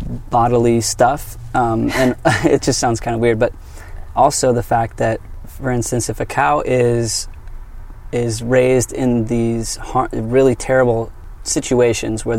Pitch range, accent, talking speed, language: 110-125 Hz, American, 145 wpm, English